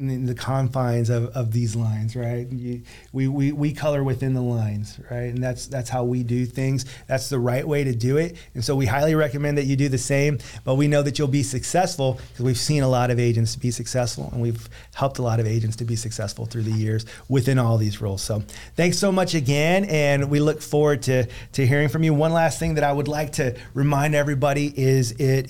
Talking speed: 235 wpm